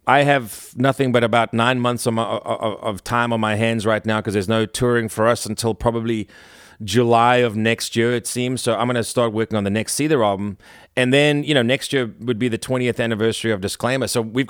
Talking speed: 235 wpm